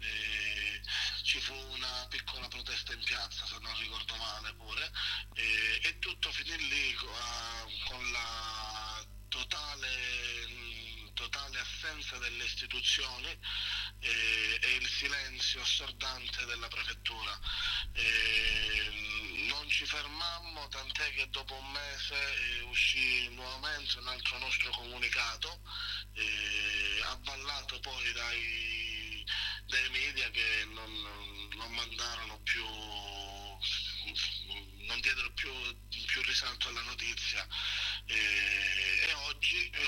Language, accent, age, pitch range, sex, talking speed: Italian, native, 30-49, 105-125 Hz, male, 105 wpm